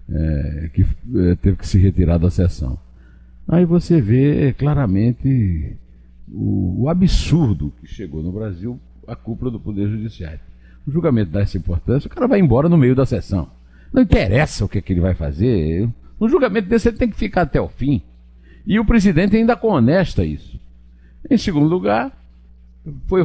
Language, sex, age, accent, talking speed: Portuguese, male, 60-79, Brazilian, 175 wpm